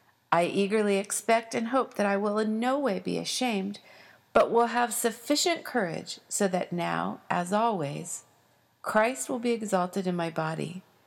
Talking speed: 165 wpm